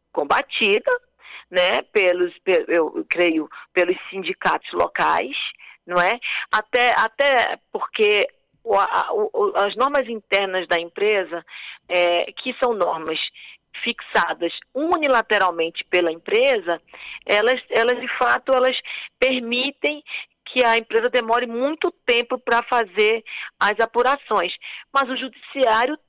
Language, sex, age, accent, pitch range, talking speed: Portuguese, female, 40-59, Brazilian, 200-310 Hz, 110 wpm